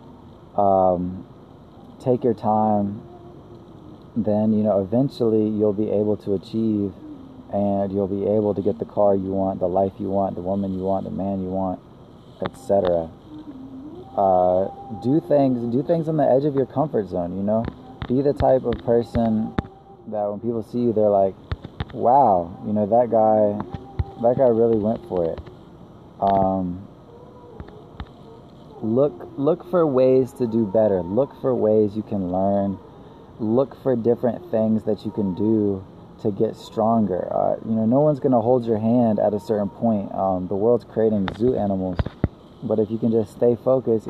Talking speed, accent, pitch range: 170 wpm, American, 100-125 Hz